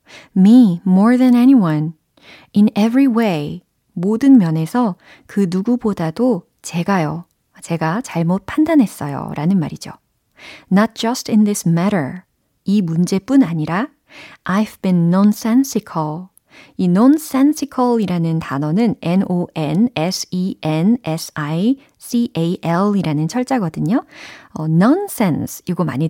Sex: female